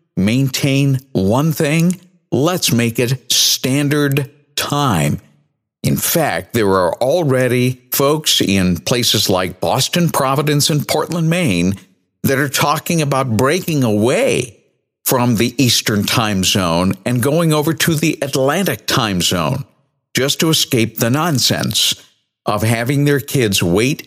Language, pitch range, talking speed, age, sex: English, 100-150 Hz, 125 wpm, 50-69, male